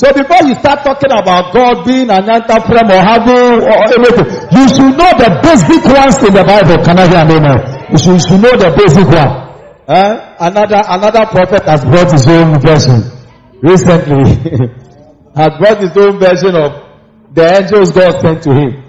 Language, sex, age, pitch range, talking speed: English, male, 50-69, 175-240 Hz, 160 wpm